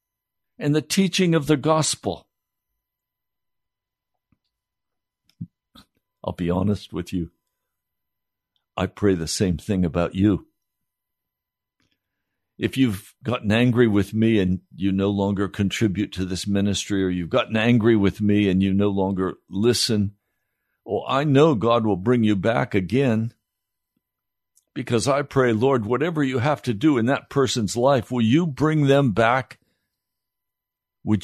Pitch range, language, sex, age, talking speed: 100-150 Hz, English, male, 60-79, 135 wpm